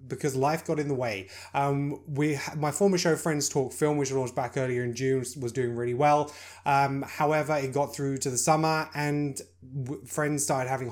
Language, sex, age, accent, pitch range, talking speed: English, male, 20-39, British, 125-150 Hz, 200 wpm